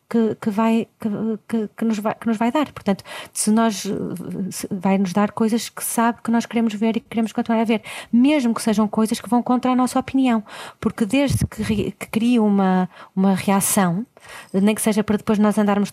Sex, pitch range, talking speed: female, 210-235 Hz, 195 wpm